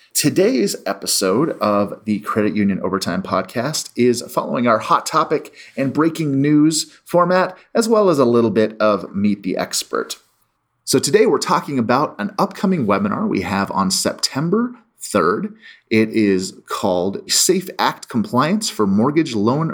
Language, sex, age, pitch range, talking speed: English, male, 30-49, 105-165 Hz, 150 wpm